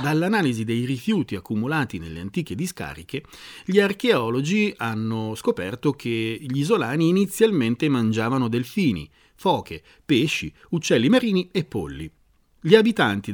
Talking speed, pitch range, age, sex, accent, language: 115 wpm, 115-185 Hz, 40-59, male, native, Italian